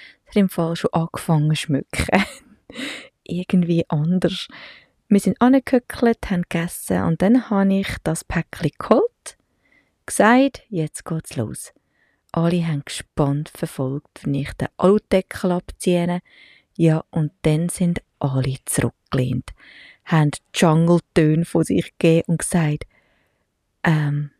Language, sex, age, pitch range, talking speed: English, female, 20-39, 140-190 Hz, 120 wpm